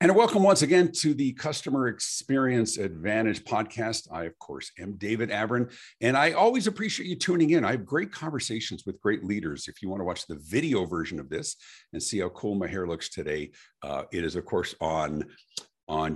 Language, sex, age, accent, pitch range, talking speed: English, male, 50-69, American, 90-135 Hz, 205 wpm